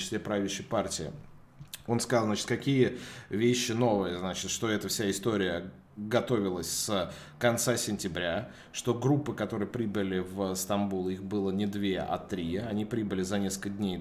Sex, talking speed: male, 145 wpm